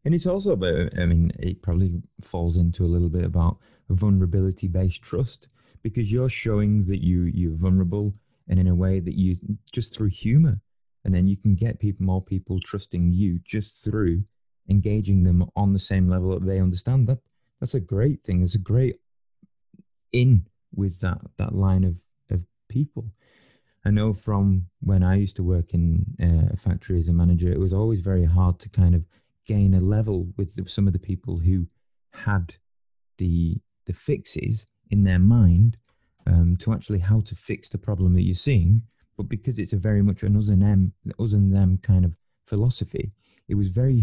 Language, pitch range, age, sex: English, 90-110 Hz, 30-49, male